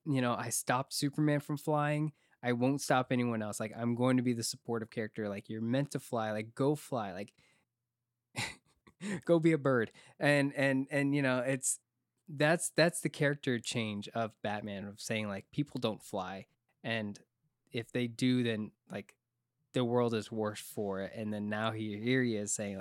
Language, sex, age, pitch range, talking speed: English, male, 20-39, 110-135 Hz, 185 wpm